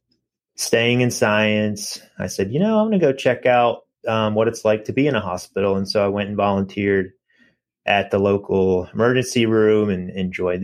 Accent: American